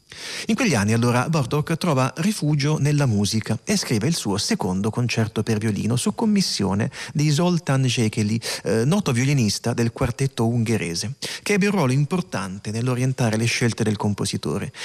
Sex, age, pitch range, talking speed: male, 40-59, 110-150 Hz, 155 wpm